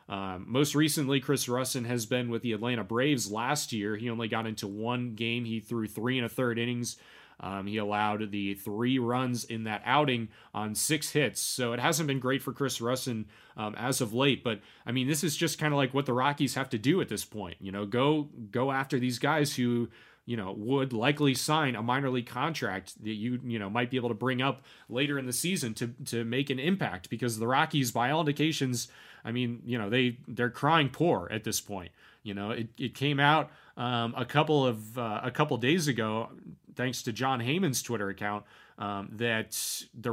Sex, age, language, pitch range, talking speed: male, 30-49, English, 115-140 Hz, 220 wpm